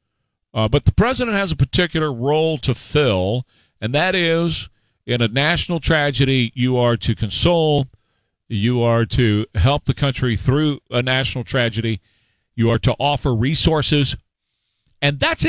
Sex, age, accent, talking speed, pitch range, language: male, 40-59, American, 145 wpm, 115-180 Hz, English